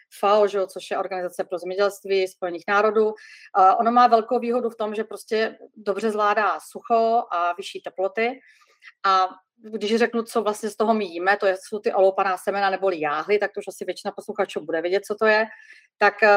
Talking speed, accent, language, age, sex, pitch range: 185 wpm, native, Czech, 30-49, female, 185-215 Hz